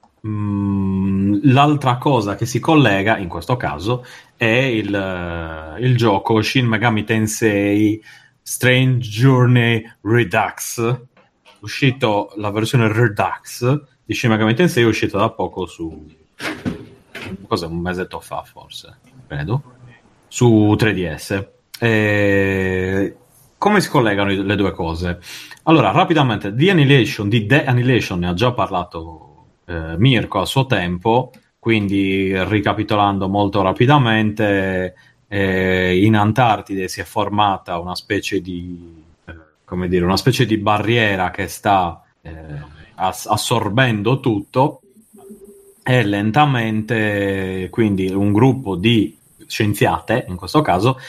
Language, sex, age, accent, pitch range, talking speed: Italian, male, 30-49, native, 95-125 Hz, 115 wpm